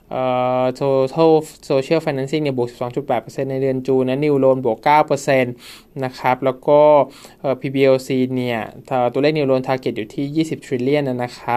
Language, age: Thai, 20-39